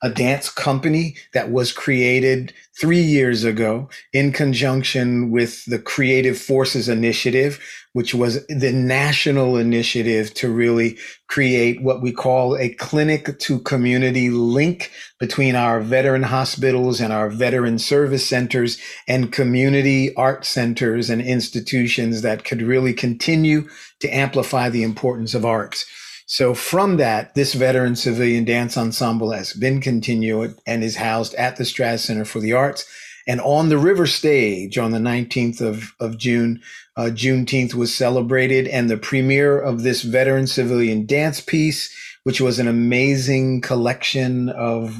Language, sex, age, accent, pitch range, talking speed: English, male, 50-69, American, 120-135 Hz, 145 wpm